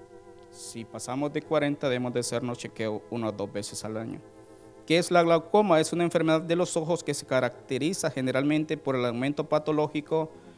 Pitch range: 115-150 Hz